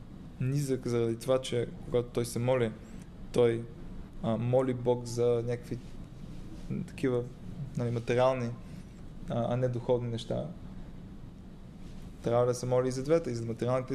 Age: 20-39